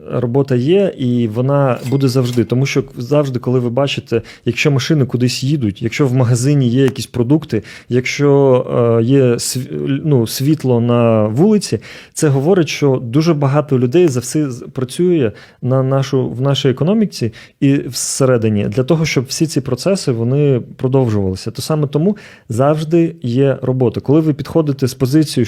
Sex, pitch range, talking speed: male, 125-150 Hz, 140 wpm